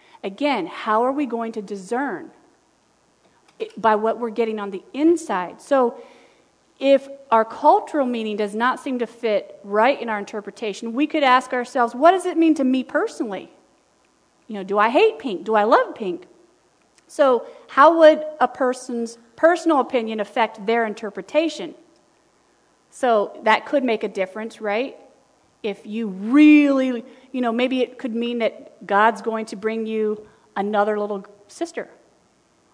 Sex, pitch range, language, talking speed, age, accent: female, 220-305 Hz, English, 155 wpm, 40-59, American